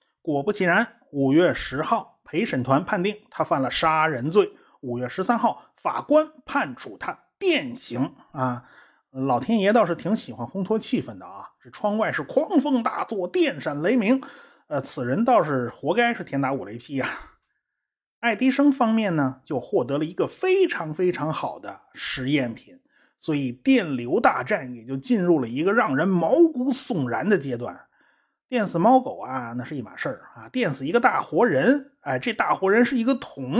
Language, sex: Chinese, male